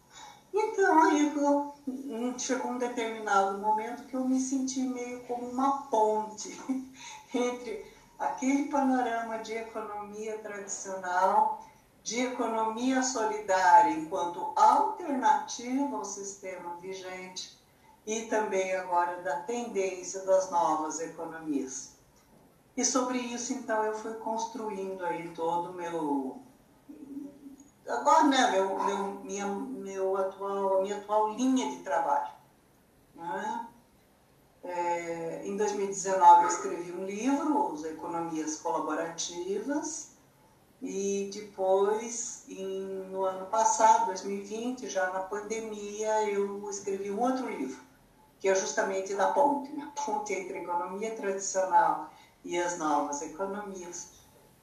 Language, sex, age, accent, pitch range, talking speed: Portuguese, female, 60-79, Brazilian, 190-260 Hz, 110 wpm